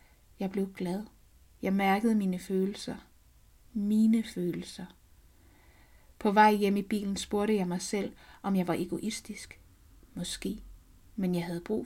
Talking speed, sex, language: 135 wpm, female, Danish